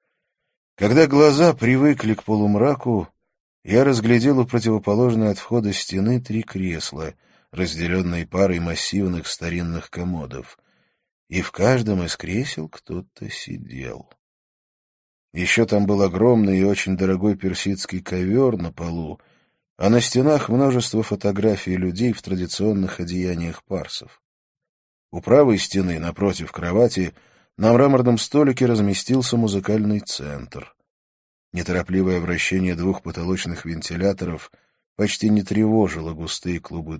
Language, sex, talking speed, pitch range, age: Russian, male, 110 wpm, 85-110 Hz, 20-39